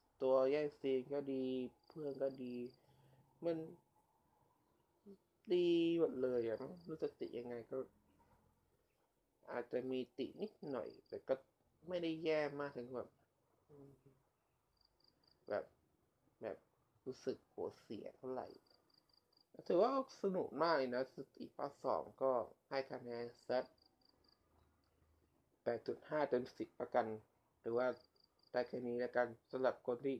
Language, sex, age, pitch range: Thai, male, 20-39, 120-150 Hz